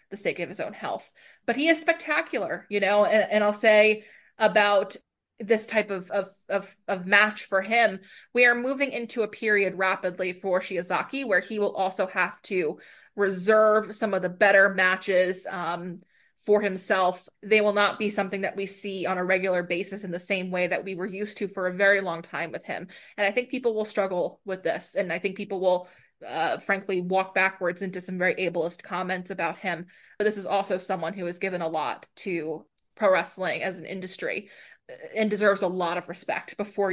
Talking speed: 205 wpm